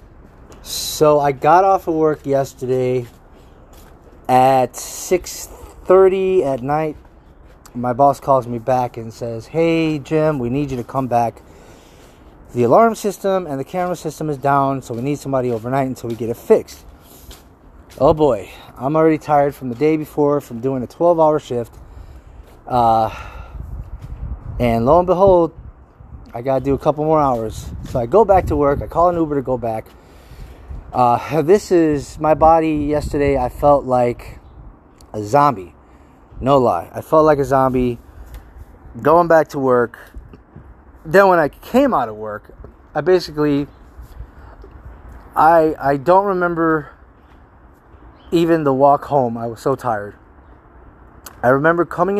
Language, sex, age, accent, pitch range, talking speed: English, male, 30-49, American, 110-155 Hz, 150 wpm